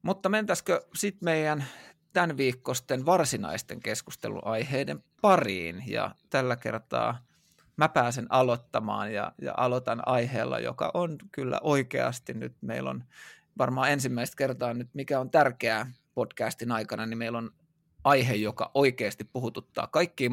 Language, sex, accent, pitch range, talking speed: Finnish, male, native, 110-145 Hz, 130 wpm